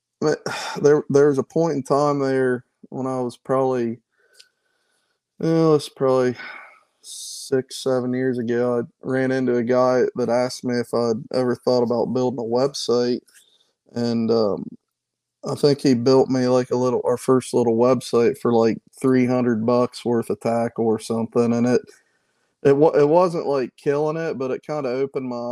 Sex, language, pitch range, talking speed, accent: male, English, 120-135 Hz, 170 wpm, American